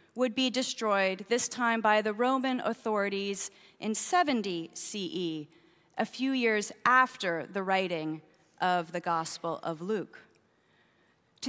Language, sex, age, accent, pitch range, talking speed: English, female, 30-49, American, 220-300 Hz, 125 wpm